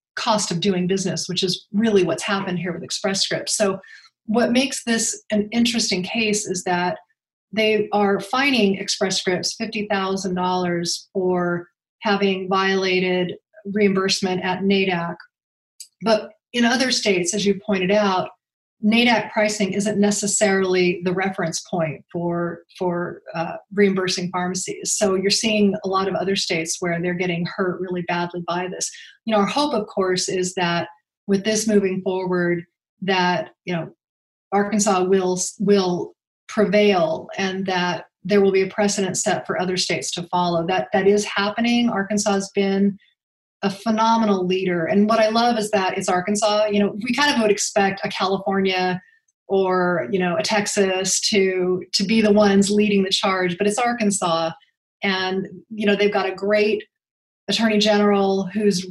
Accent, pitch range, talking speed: American, 180-210 Hz, 160 wpm